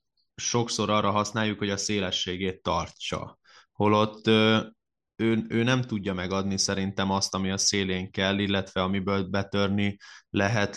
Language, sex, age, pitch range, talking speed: Hungarian, male, 20-39, 100-115 Hz, 130 wpm